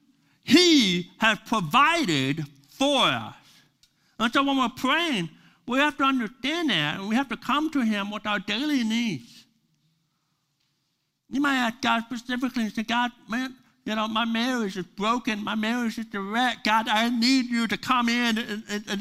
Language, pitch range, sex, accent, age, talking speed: English, 155-245 Hz, male, American, 60-79, 175 wpm